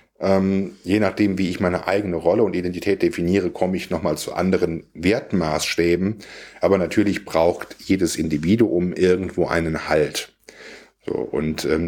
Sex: male